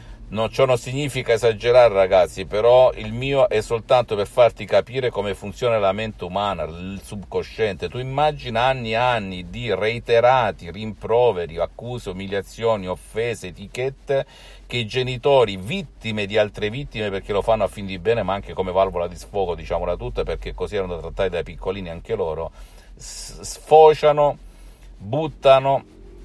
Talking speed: 150 wpm